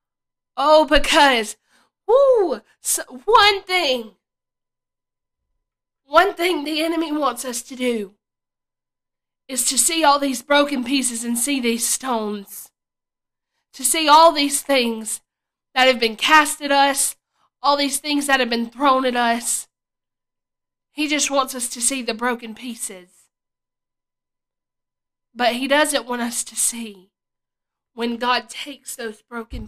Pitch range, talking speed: 215-270 Hz, 130 wpm